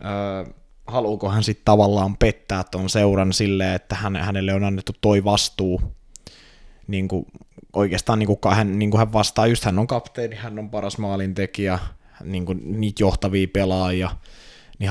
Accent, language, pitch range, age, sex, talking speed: native, Finnish, 95-110 Hz, 20-39, male, 145 wpm